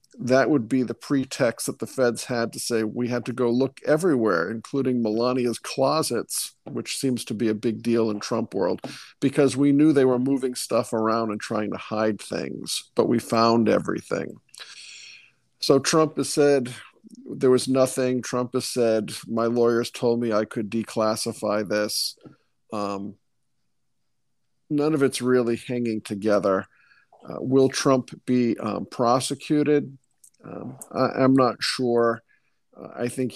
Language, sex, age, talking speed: English, male, 50-69, 155 wpm